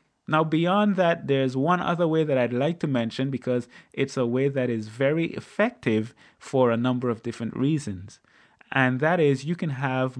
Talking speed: 190 wpm